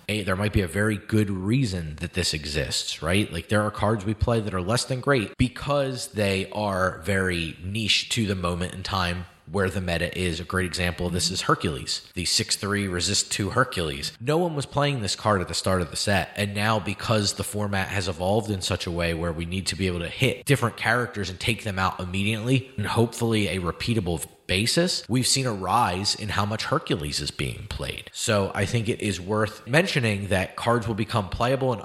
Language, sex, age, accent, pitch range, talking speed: English, male, 30-49, American, 90-115 Hz, 215 wpm